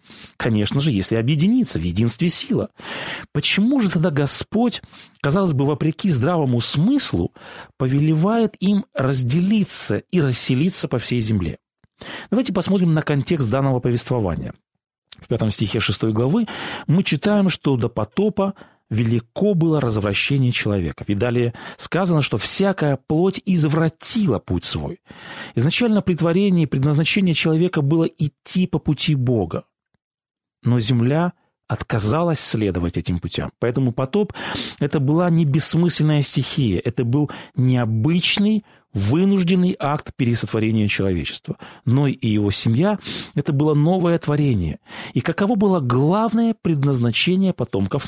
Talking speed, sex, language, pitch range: 125 wpm, male, Russian, 120-180 Hz